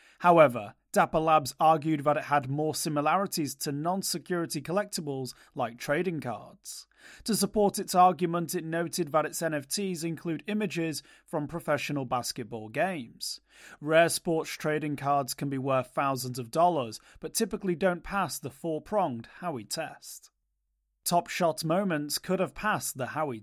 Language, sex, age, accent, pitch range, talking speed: English, male, 30-49, British, 140-175 Hz, 145 wpm